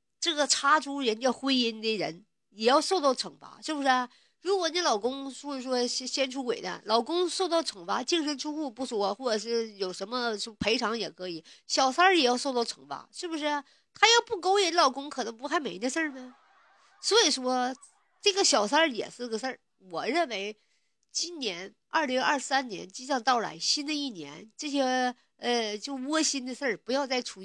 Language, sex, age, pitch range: Chinese, female, 50-69, 220-285 Hz